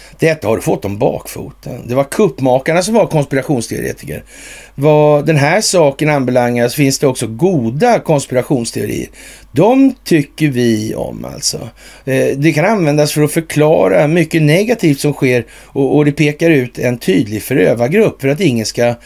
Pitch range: 125-155 Hz